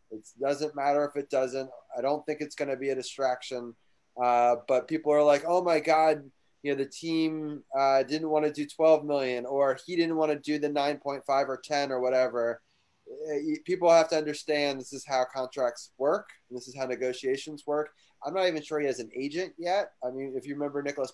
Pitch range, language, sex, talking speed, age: 130-155 Hz, English, male, 215 wpm, 20-39